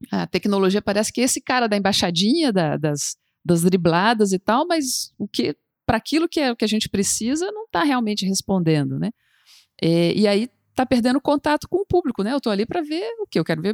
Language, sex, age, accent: Portuguese, female, 50-69, Brazilian